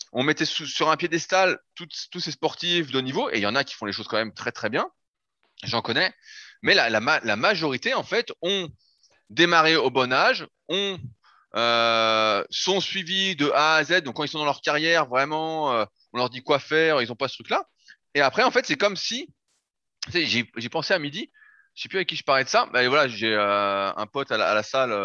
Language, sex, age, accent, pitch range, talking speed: French, male, 20-39, French, 115-165 Hz, 240 wpm